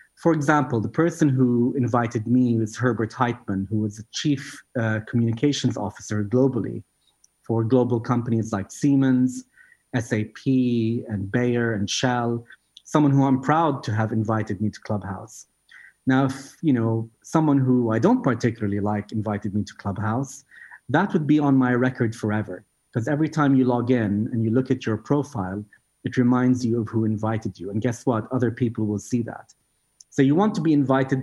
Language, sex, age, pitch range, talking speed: English, male, 30-49, 110-135 Hz, 175 wpm